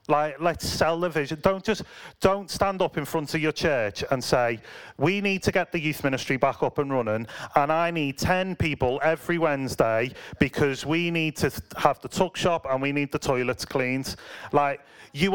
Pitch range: 120-155 Hz